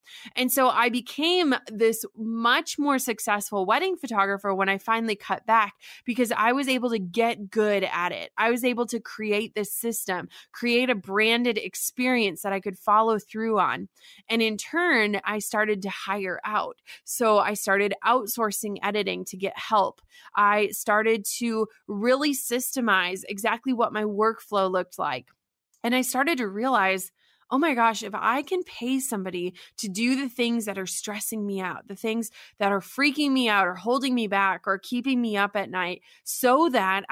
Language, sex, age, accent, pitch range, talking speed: English, female, 20-39, American, 200-250 Hz, 175 wpm